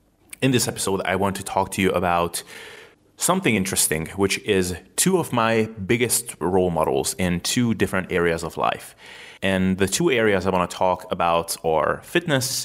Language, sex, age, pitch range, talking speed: English, male, 30-49, 85-105 Hz, 175 wpm